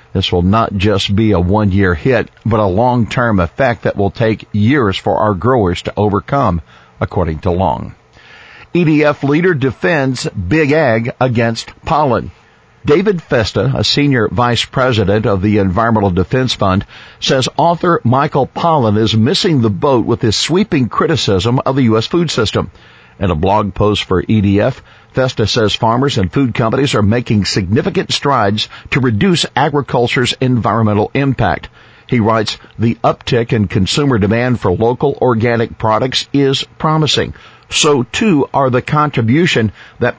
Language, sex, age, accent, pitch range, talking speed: English, male, 50-69, American, 105-135 Hz, 150 wpm